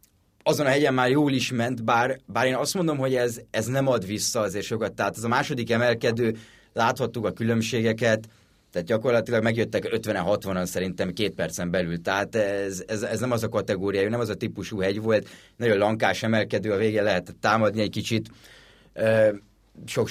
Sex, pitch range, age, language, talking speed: male, 105-125 Hz, 30-49, Hungarian, 180 wpm